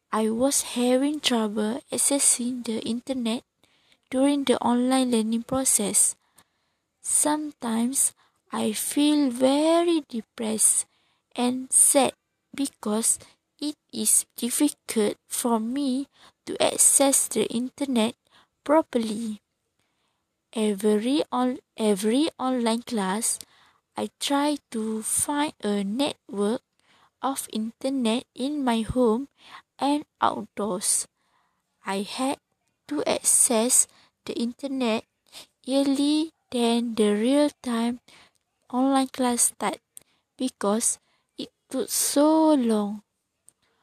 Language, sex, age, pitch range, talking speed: English, female, 20-39, 220-275 Hz, 90 wpm